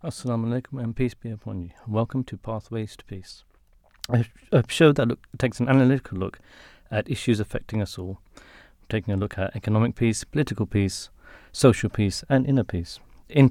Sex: male